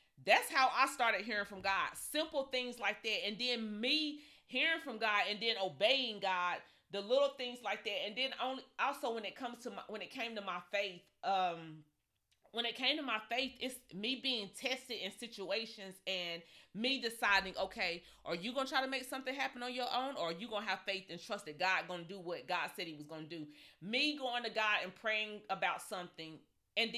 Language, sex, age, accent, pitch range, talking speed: English, female, 30-49, American, 190-255 Hz, 225 wpm